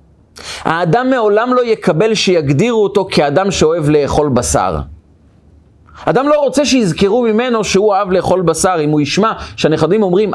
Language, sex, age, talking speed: Hebrew, male, 30-49, 140 wpm